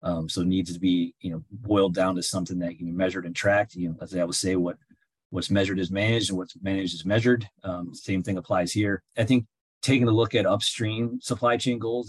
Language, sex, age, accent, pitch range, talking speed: English, male, 30-49, American, 90-105 Hz, 245 wpm